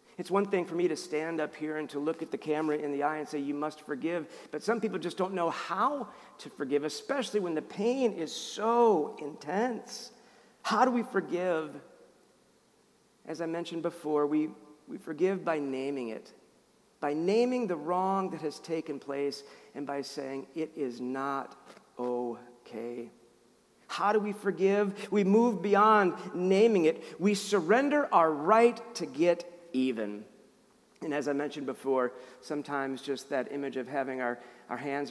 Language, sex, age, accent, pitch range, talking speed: English, male, 50-69, American, 140-200 Hz, 170 wpm